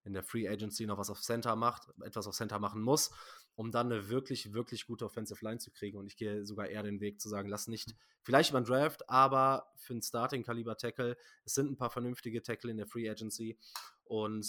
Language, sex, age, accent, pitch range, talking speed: German, male, 20-39, German, 110-135 Hz, 220 wpm